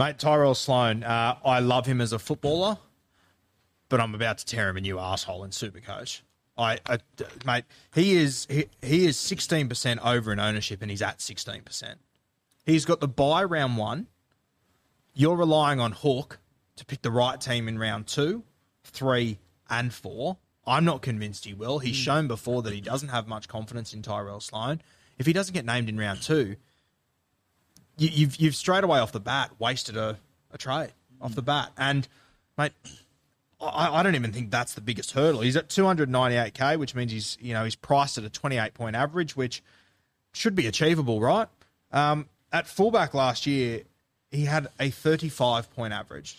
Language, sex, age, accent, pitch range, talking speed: English, male, 20-39, Australian, 110-150 Hz, 180 wpm